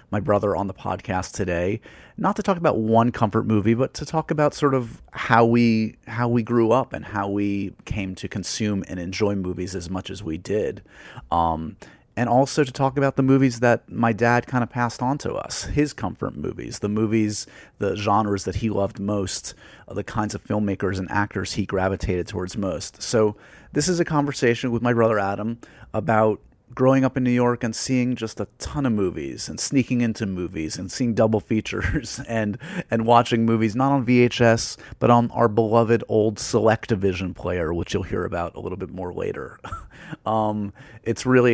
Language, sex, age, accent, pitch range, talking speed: English, male, 30-49, American, 100-120 Hz, 190 wpm